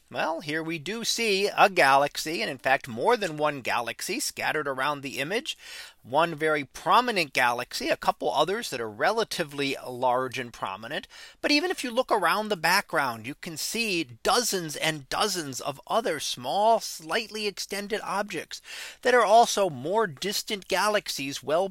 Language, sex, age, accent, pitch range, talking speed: English, male, 40-59, American, 145-215 Hz, 160 wpm